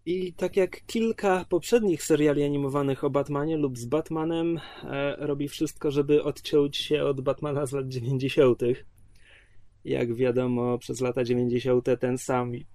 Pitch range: 120-140 Hz